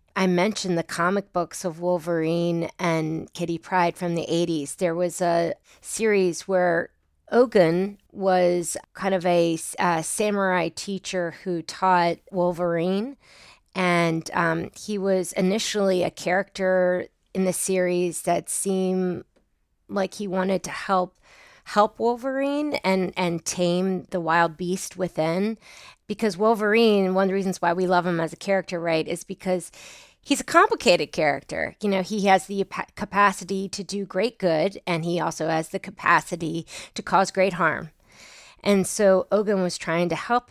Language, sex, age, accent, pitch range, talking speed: English, female, 30-49, American, 170-195 Hz, 150 wpm